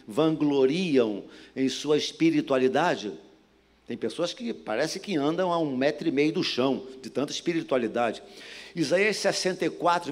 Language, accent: Portuguese, Brazilian